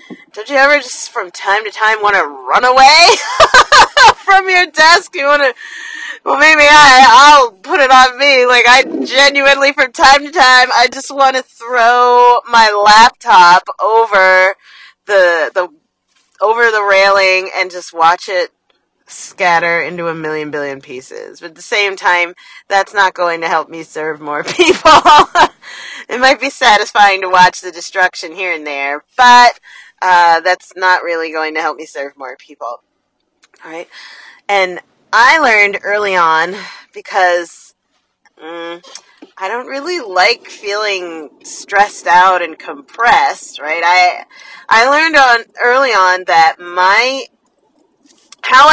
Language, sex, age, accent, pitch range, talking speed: English, female, 30-49, American, 175-275 Hz, 150 wpm